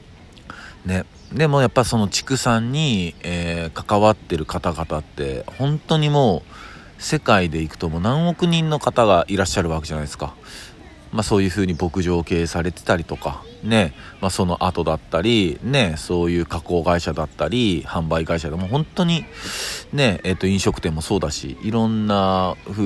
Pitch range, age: 85-115 Hz, 40-59